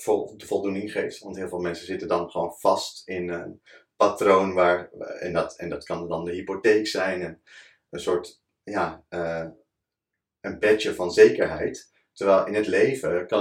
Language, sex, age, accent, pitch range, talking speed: Dutch, male, 30-49, Dutch, 85-110 Hz, 170 wpm